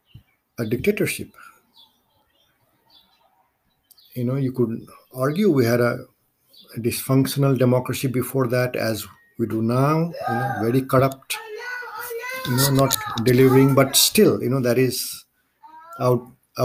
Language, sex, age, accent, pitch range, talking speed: English, male, 50-69, Indian, 120-140 Hz, 125 wpm